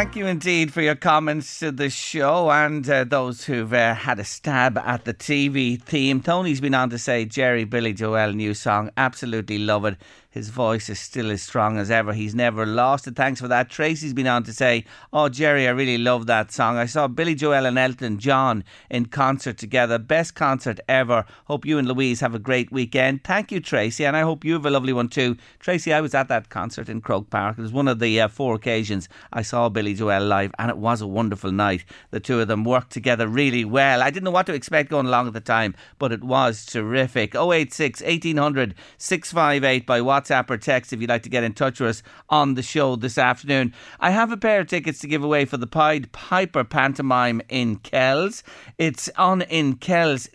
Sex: male